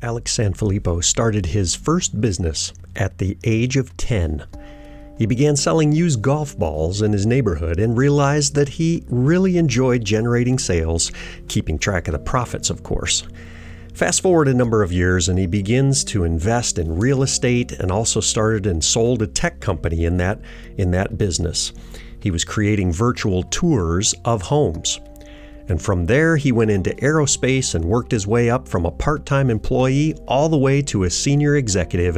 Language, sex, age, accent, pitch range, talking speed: English, male, 50-69, American, 90-135 Hz, 170 wpm